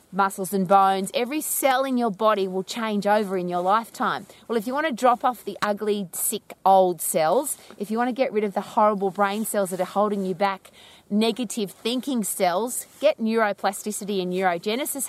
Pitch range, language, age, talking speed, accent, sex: 195-255 Hz, English, 30-49, 195 wpm, Australian, female